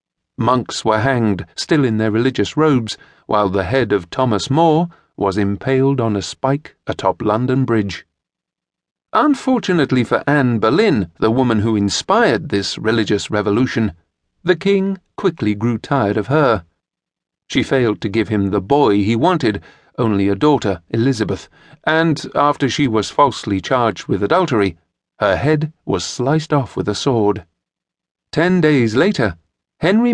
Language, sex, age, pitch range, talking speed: English, male, 40-59, 105-150 Hz, 145 wpm